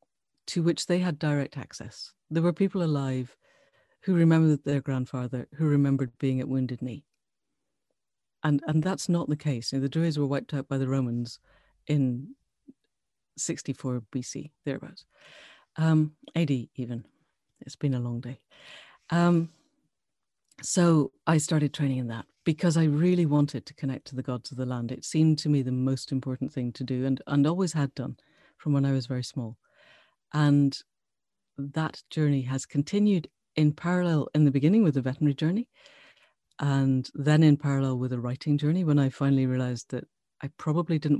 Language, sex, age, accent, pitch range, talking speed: English, female, 50-69, British, 130-155 Hz, 170 wpm